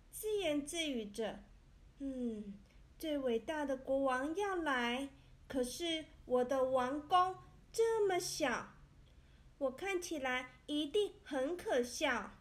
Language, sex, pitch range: Chinese, female, 225-300 Hz